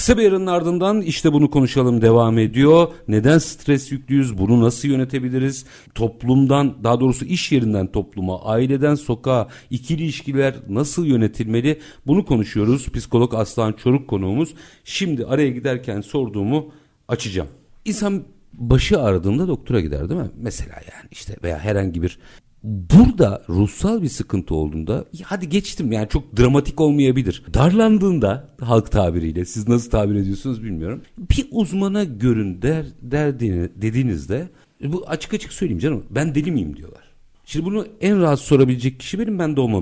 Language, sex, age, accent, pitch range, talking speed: Turkish, male, 50-69, native, 105-150 Hz, 140 wpm